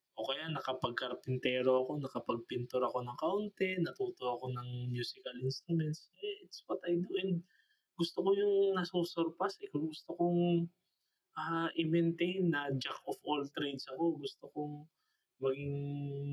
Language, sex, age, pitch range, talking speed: Filipino, male, 20-39, 130-175 Hz, 130 wpm